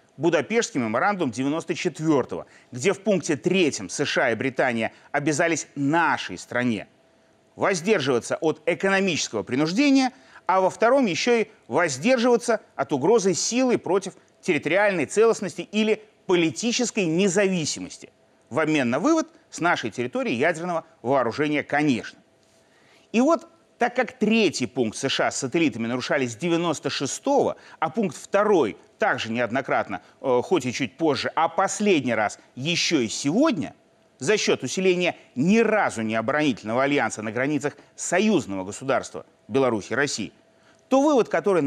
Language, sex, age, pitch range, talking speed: Russian, male, 30-49, 145-225 Hz, 120 wpm